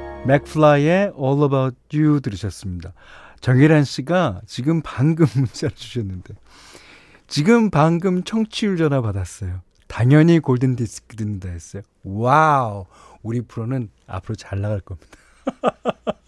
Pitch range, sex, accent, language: 105-155 Hz, male, native, Korean